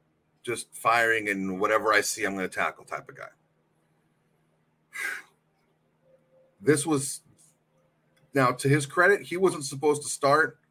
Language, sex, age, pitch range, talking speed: English, male, 30-49, 95-145 Hz, 135 wpm